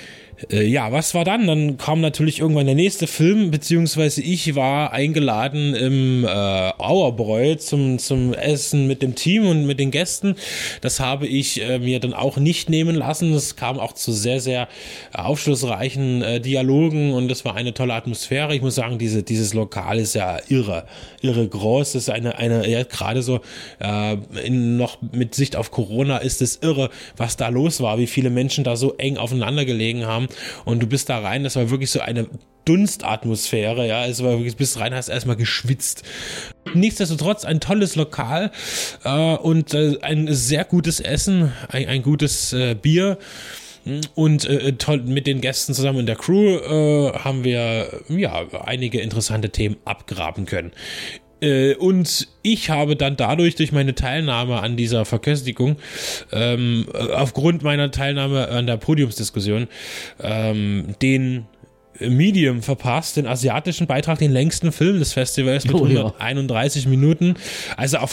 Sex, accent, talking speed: male, German, 160 wpm